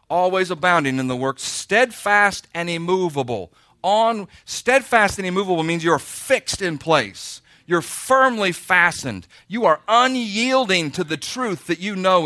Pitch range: 150-205 Hz